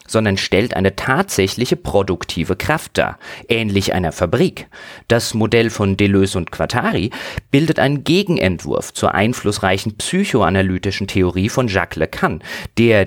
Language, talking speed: German, 125 wpm